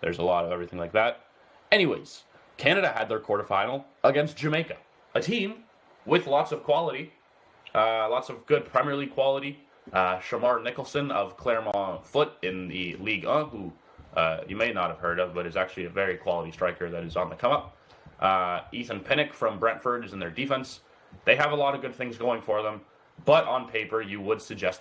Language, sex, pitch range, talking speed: English, male, 100-135 Hz, 200 wpm